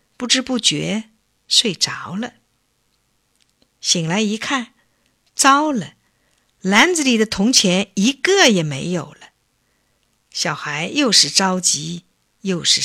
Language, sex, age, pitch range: Chinese, female, 50-69, 170-250 Hz